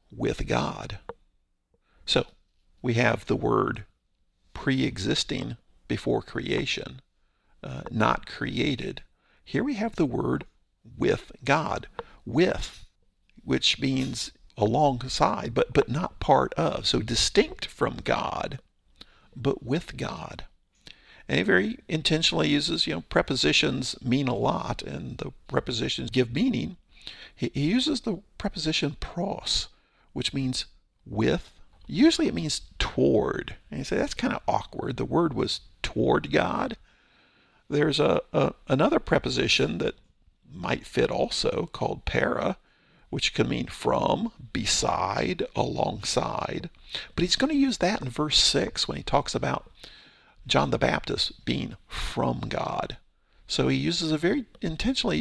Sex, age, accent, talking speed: male, 50-69, American, 130 wpm